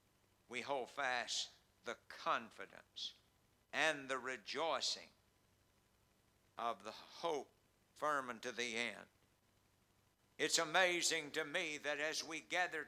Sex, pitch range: male, 110-160 Hz